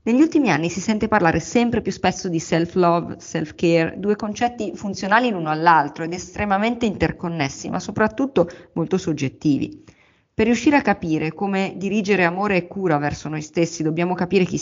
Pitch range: 165-210 Hz